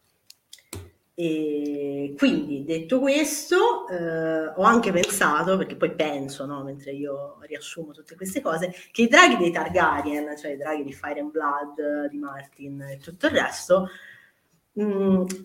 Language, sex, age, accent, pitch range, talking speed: Italian, female, 30-49, native, 145-185 Hz, 145 wpm